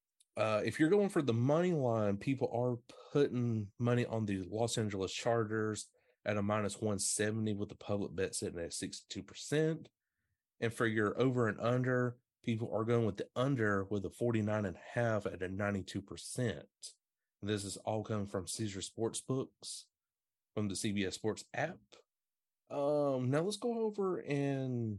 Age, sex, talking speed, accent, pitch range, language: 30-49, male, 155 wpm, American, 100-130 Hz, English